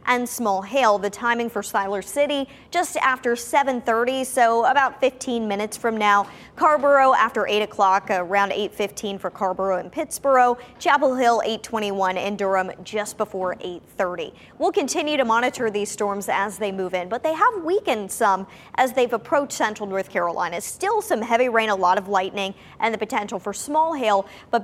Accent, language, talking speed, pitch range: American, English, 185 wpm, 195-260 Hz